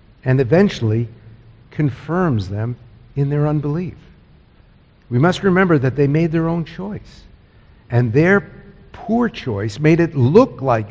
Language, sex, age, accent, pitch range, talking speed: English, male, 60-79, American, 125-180 Hz, 130 wpm